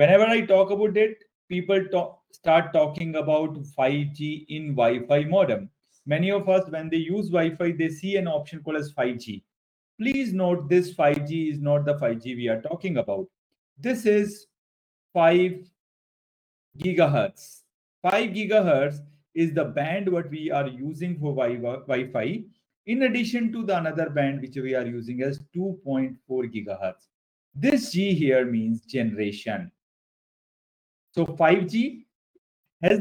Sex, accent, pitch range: male, Indian, 140-195 Hz